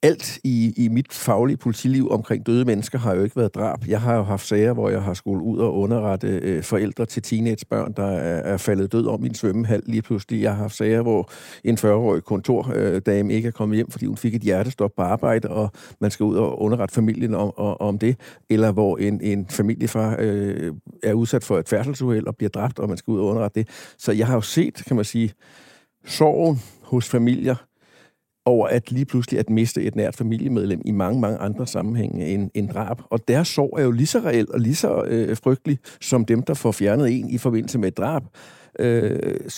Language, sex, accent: Danish, male, native